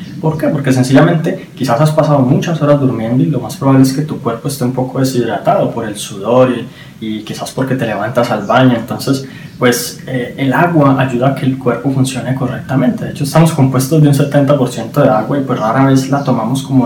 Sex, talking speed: male, 215 wpm